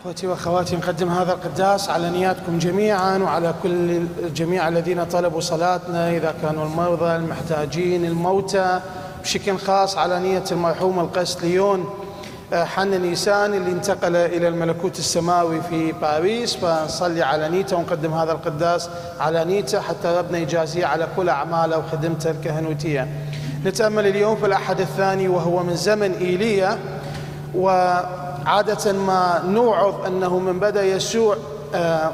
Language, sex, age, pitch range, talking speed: English, male, 30-49, 170-205 Hz, 125 wpm